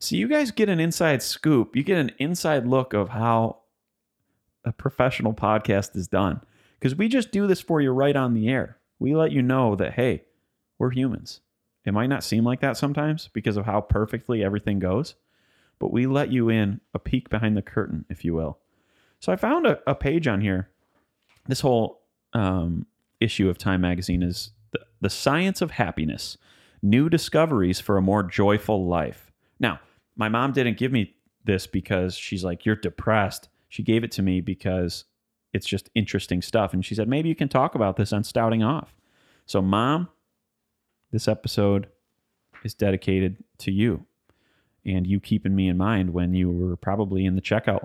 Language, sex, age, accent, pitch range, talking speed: English, male, 30-49, American, 95-125 Hz, 185 wpm